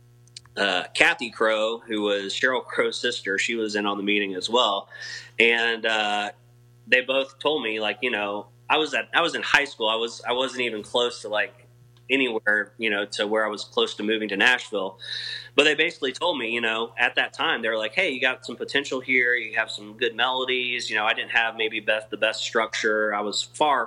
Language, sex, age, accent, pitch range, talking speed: English, male, 30-49, American, 110-120 Hz, 225 wpm